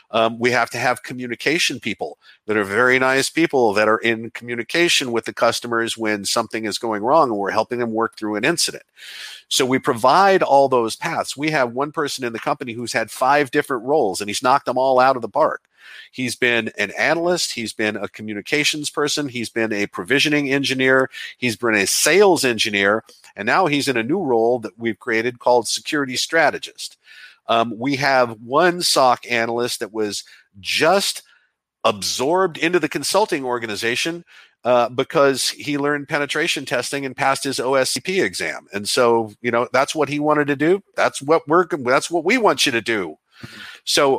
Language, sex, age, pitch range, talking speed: English, male, 50-69, 115-145 Hz, 185 wpm